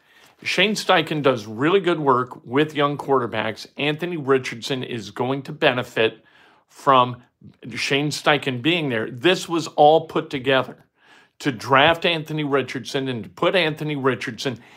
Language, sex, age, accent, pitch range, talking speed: English, male, 50-69, American, 130-155 Hz, 140 wpm